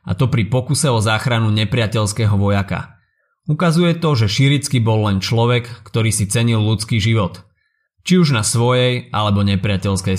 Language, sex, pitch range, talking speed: Slovak, male, 105-135 Hz, 155 wpm